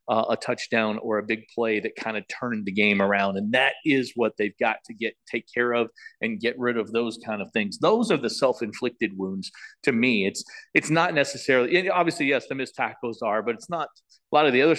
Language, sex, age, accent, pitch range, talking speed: English, male, 40-59, American, 115-150 Hz, 240 wpm